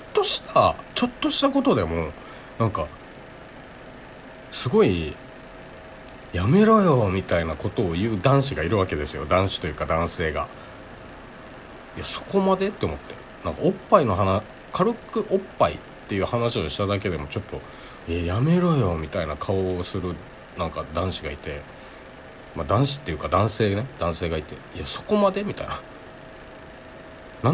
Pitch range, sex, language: 85-135 Hz, male, Japanese